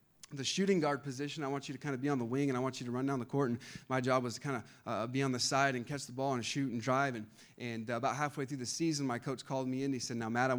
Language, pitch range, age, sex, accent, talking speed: English, 130-165 Hz, 30-49, male, American, 345 wpm